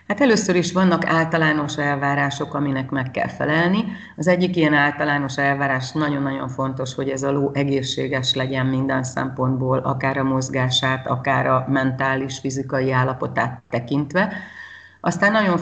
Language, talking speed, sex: Hungarian, 140 wpm, female